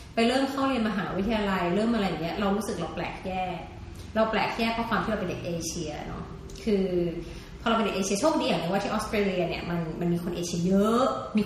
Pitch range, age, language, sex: 180-220 Hz, 30-49, Thai, female